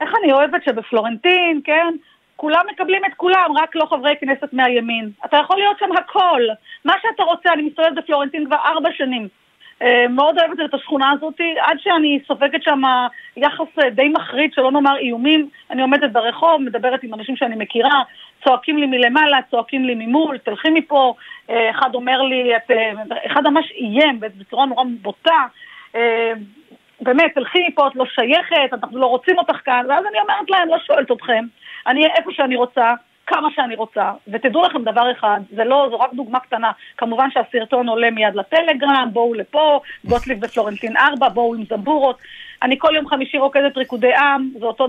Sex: female